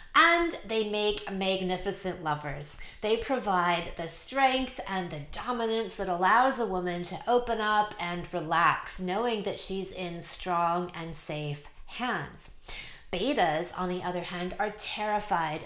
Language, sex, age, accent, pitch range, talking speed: English, female, 30-49, American, 175-225 Hz, 140 wpm